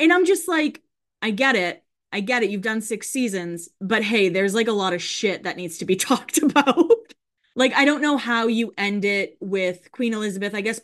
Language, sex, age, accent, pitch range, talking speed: English, female, 20-39, American, 195-270 Hz, 225 wpm